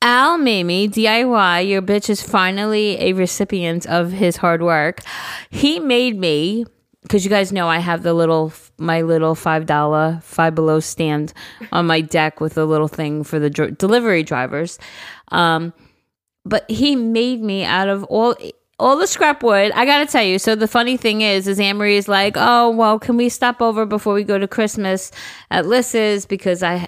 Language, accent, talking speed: English, American, 185 wpm